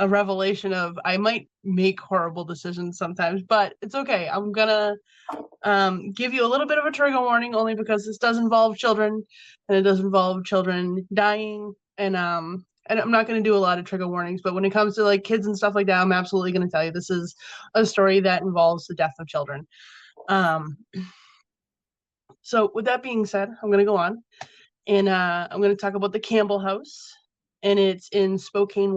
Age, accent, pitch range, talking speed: 20-39, American, 185-220 Hz, 210 wpm